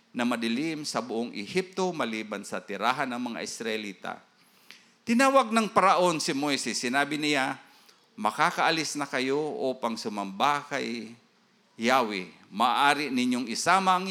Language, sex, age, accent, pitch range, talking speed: Filipino, male, 50-69, native, 135-205 Hz, 125 wpm